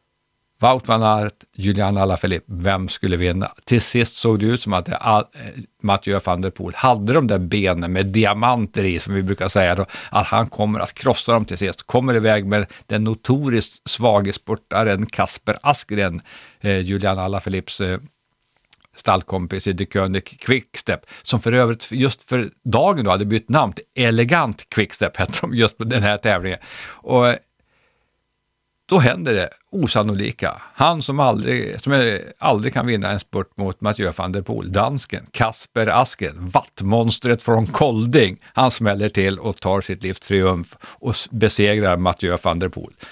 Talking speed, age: 155 wpm, 50-69